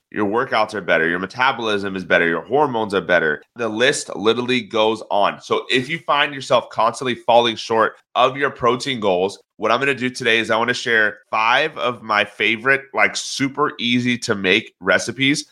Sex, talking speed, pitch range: male, 185 wpm, 110-135 Hz